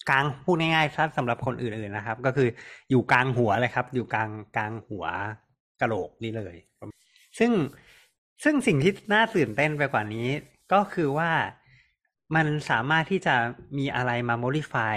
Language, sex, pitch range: Thai, male, 110-140 Hz